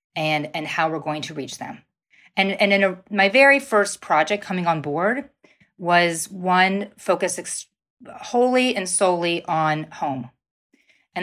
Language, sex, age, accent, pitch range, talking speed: English, female, 30-49, American, 165-215 Hz, 145 wpm